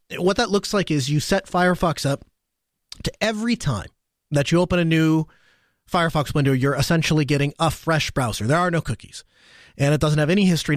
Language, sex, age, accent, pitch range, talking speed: English, male, 30-49, American, 135-175 Hz, 195 wpm